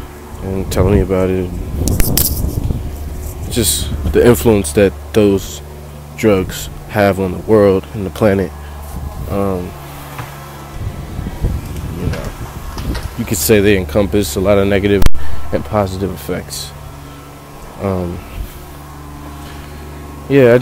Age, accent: 20-39, American